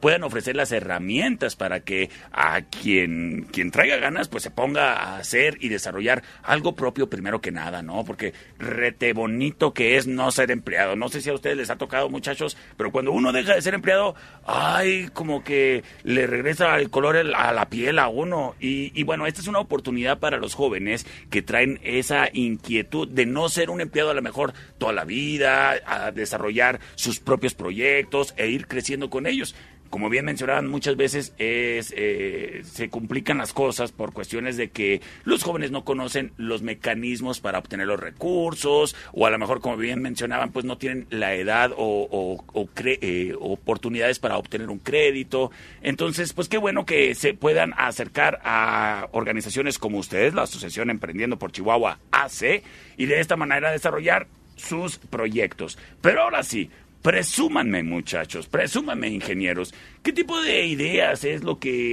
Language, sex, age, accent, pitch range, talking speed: Spanish, male, 40-59, Mexican, 115-150 Hz, 175 wpm